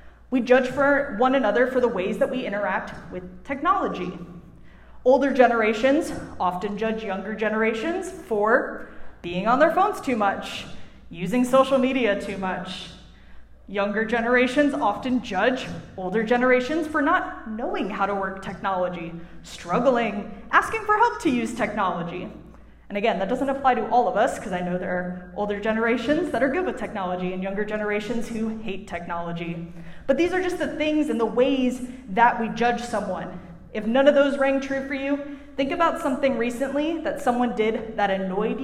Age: 20-39